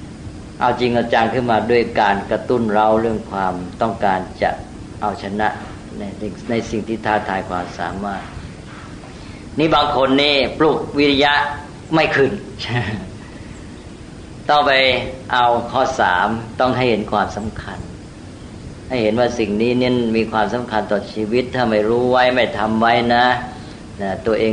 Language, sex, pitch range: Thai, female, 105-125 Hz